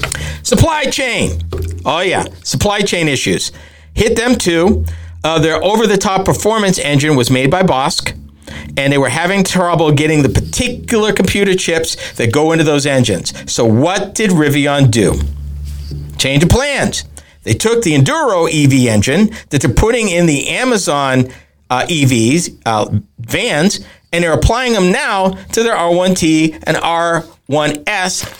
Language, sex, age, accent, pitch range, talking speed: English, male, 50-69, American, 120-195 Hz, 145 wpm